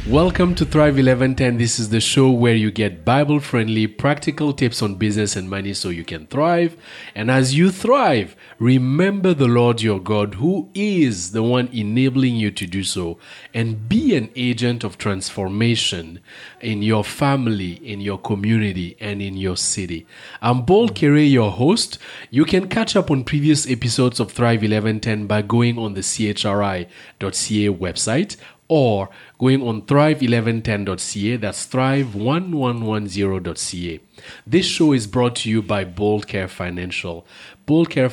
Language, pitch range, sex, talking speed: English, 100-130 Hz, male, 150 wpm